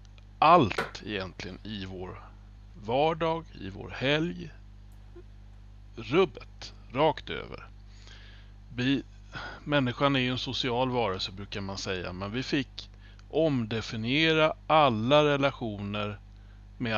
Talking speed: 105 wpm